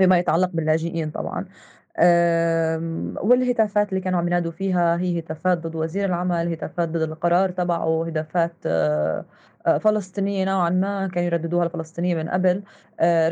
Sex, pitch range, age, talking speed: female, 165-190 Hz, 20-39, 135 wpm